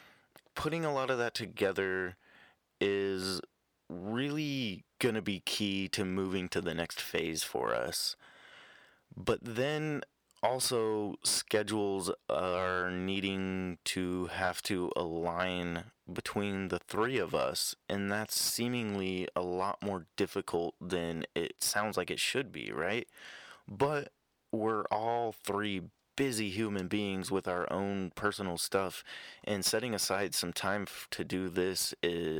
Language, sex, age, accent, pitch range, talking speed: English, male, 20-39, American, 90-110 Hz, 130 wpm